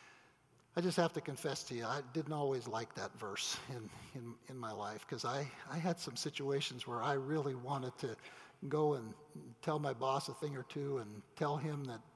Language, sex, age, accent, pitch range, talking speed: English, male, 50-69, American, 145-180 Hz, 205 wpm